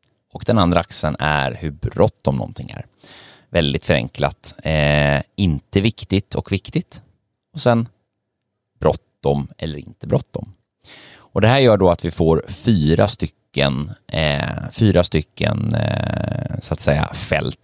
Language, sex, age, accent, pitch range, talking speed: Swedish, male, 30-49, native, 80-110 Hz, 135 wpm